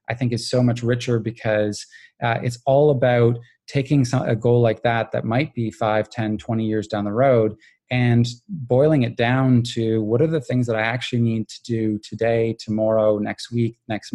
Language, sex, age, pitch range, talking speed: English, male, 20-39, 110-125 Hz, 195 wpm